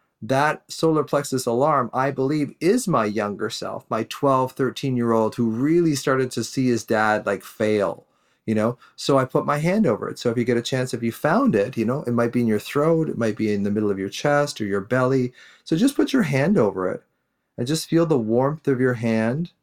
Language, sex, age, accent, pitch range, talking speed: English, male, 40-59, American, 115-145 Hz, 230 wpm